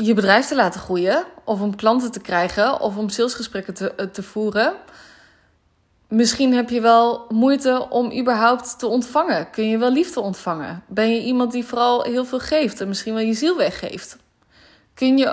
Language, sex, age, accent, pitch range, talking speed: Dutch, female, 20-39, Dutch, 200-245 Hz, 180 wpm